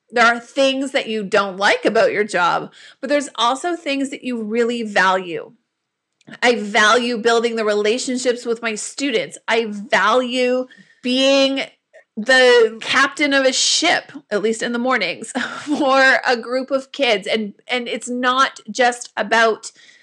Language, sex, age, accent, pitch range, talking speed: English, female, 30-49, American, 230-275 Hz, 150 wpm